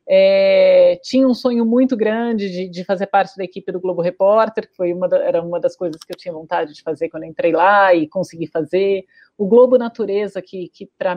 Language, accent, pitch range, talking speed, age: Portuguese, Brazilian, 185-230 Hz, 225 wpm, 30-49